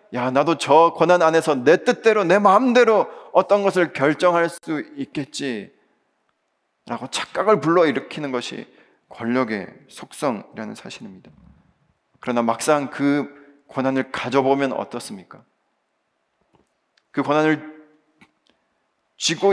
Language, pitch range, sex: Korean, 130-190 Hz, male